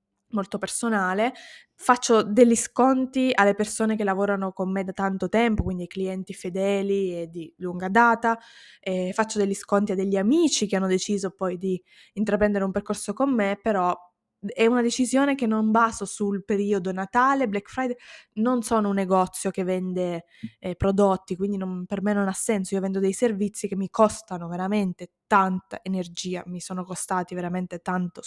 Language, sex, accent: Italian, female, native